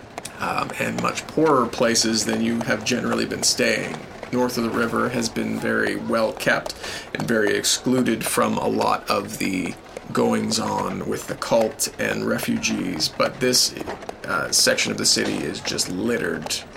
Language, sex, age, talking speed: English, male, 30-49, 160 wpm